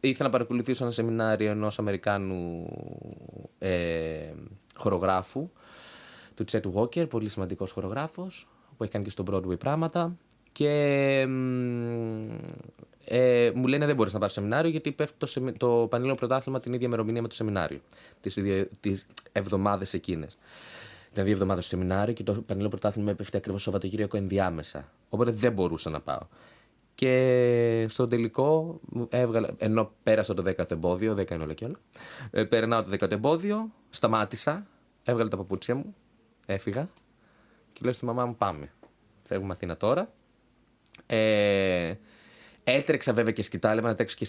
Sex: male